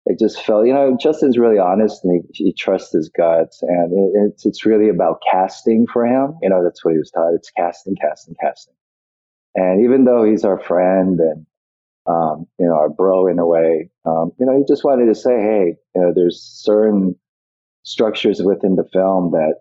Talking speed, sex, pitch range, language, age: 205 wpm, male, 85-120 Hz, English, 40-59